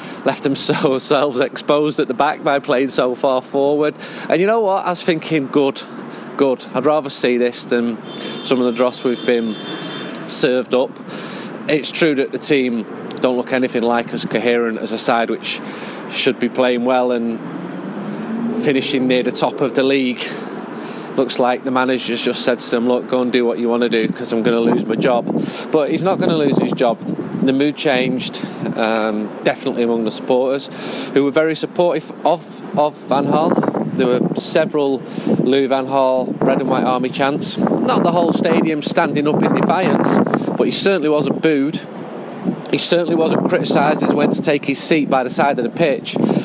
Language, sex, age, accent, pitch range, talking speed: English, male, 30-49, British, 125-155 Hz, 190 wpm